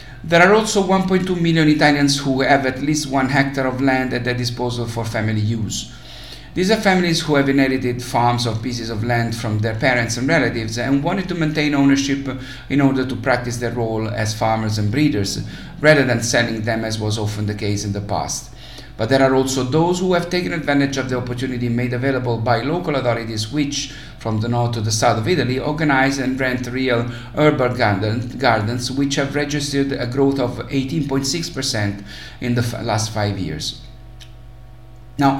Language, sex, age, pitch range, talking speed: English, male, 50-69, 115-140 Hz, 185 wpm